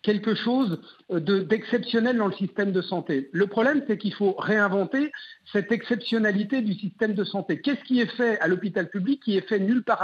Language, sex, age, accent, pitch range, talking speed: French, male, 50-69, French, 185-245 Hz, 190 wpm